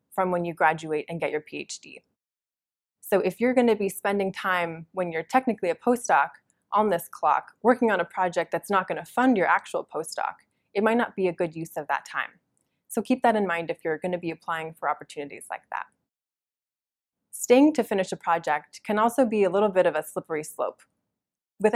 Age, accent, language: 20-39, American, English